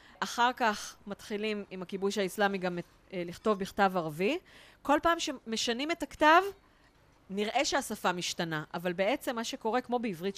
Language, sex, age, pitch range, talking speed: Hebrew, female, 30-49, 185-245 Hz, 140 wpm